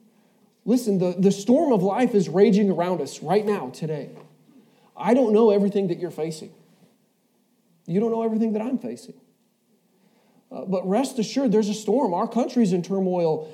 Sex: male